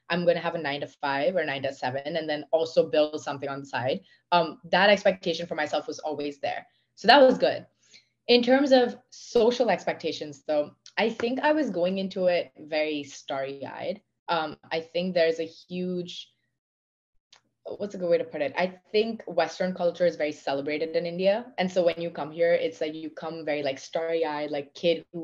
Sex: female